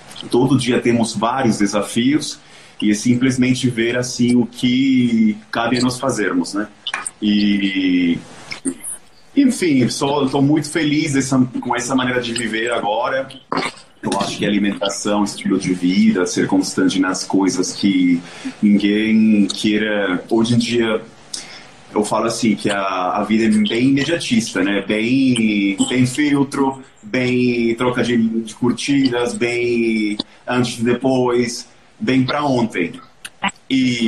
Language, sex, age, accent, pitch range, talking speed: Portuguese, male, 30-49, Brazilian, 110-135 Hz, 125 wpm